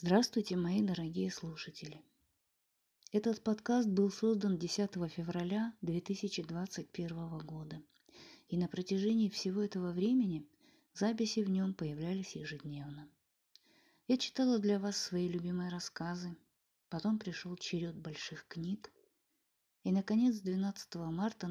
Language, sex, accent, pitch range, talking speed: Russian, female, native, 165-210 Hz, 110 wpm